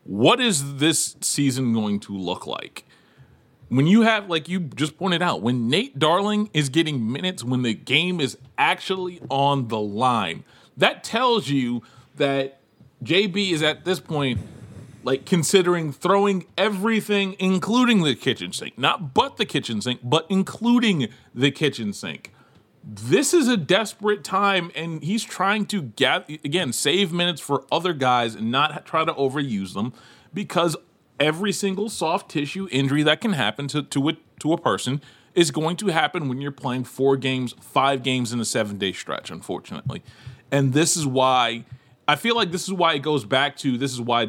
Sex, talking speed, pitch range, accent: male, 170 wpm, 125-180 Hz, American